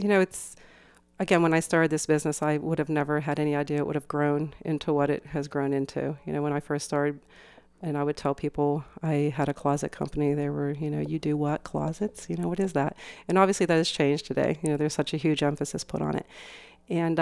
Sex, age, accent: female, 40-59, American